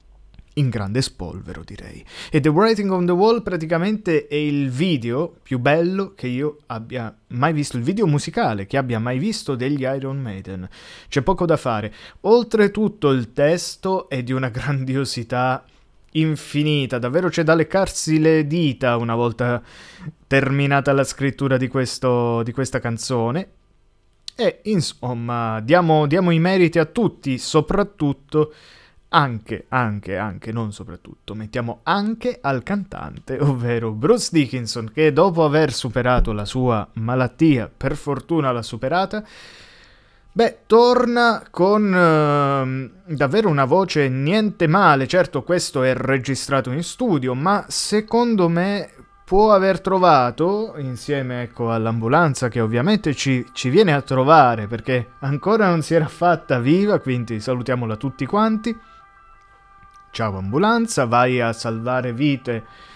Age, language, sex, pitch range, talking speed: 20-39, Italian, male, 125-175 Hz, 130 wpm